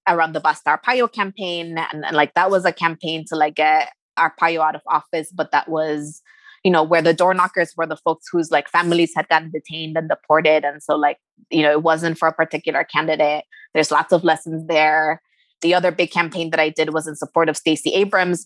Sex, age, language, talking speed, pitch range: female, 20-39, English, 220 wpm, 155-175 Hz